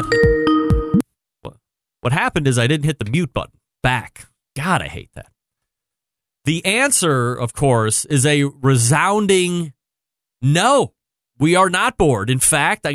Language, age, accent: English, 30-49, American